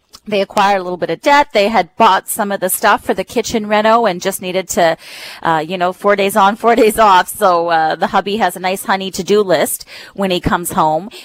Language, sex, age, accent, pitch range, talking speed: English, female, 30-49, American, 165-205 Hz, 240 wpm